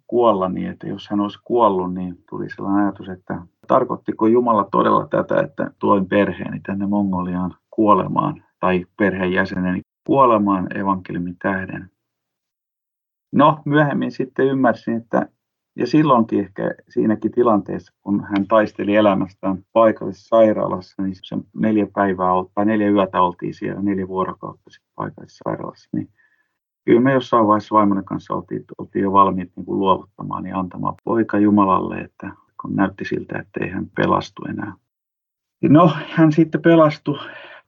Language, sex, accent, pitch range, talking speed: Finnish, male, native, 95-115 Hz, 140 wpm